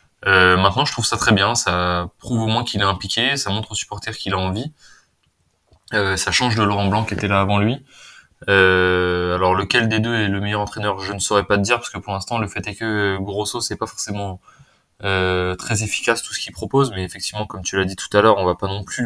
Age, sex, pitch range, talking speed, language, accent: 20-39, male, 95-110 Hz, 250 wpm, French, French